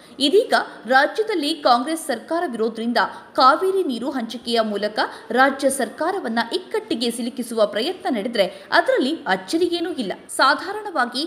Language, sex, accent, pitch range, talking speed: Kannada, female, native, 235-345 Hz, 100 wpm